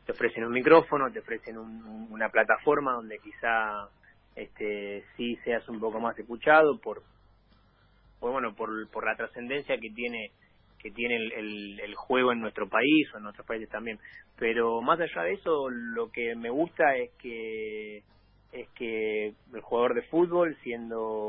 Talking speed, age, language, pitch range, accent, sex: 165 wpm, 30-49, Spanish, 105-135 Hz, Argentinian, male